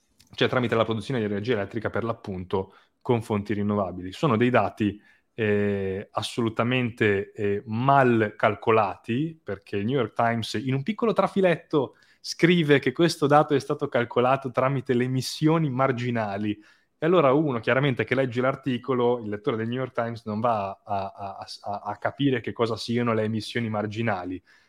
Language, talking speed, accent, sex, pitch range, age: Italian, 160 wpm, native, male, 110-150 Hz, 20-39